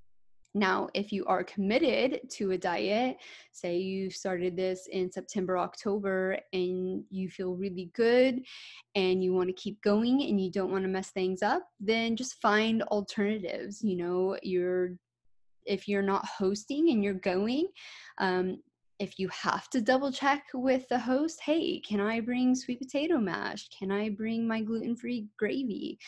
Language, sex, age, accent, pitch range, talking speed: English, female, 20-39, American, 185-235 Hz, 165 wpm